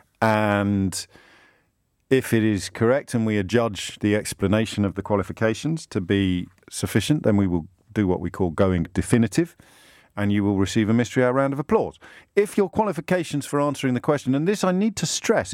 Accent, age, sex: British, 50-69, male